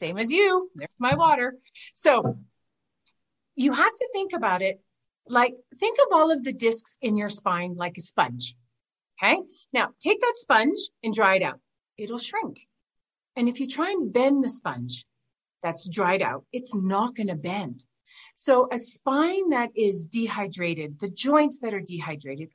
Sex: female